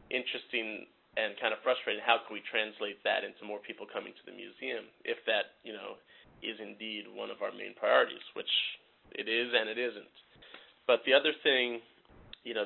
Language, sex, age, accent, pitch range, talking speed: English, male, 30-49, American, 110-160 Hz, 190 wpm